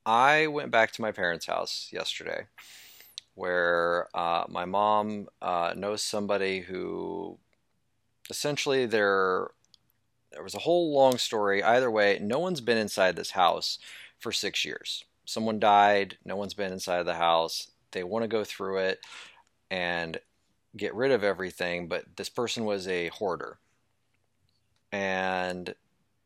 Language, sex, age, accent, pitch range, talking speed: English, male, 30-49, American, 95-115 Hz, 140 wpm